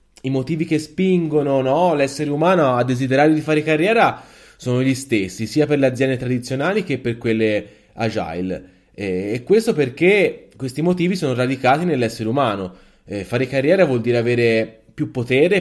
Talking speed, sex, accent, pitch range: 155 wpm, male, native, 110-140 Hz